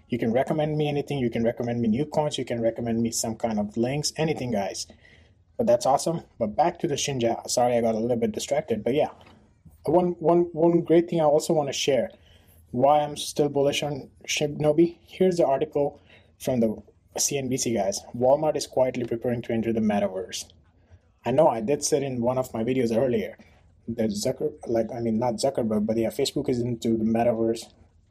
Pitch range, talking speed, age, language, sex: 110-145 Hz, 200 wpm, 20-39, English, male